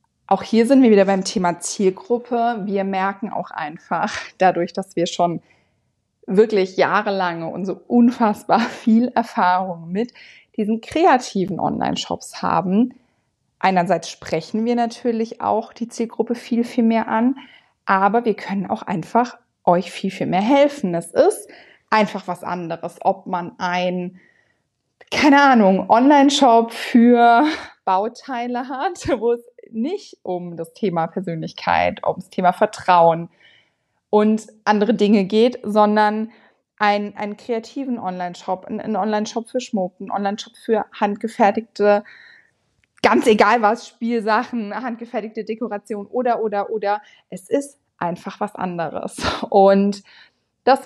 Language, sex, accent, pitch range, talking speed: German, female, German, 185-235 Hz, 125 wpm